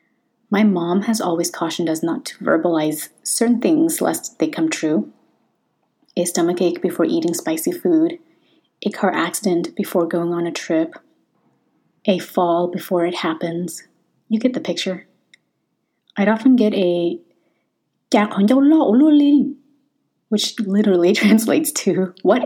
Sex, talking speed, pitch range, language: female, 125 wpm, 170-240 Hz, English